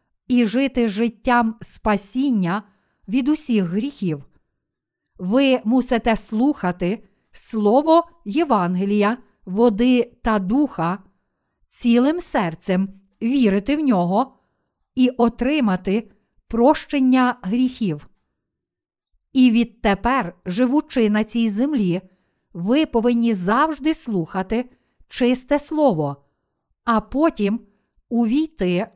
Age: 50-69